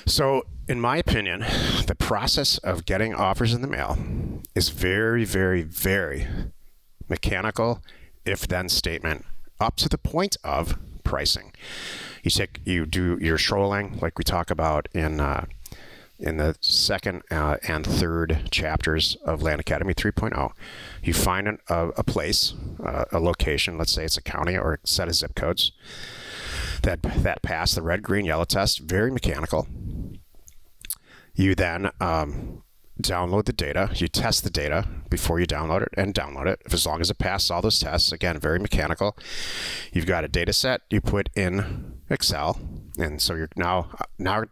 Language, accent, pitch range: English, American, 80-100 Hz